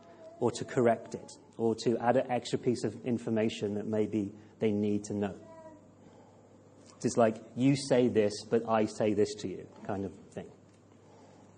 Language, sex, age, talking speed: English, male, 30-49, 165 wpm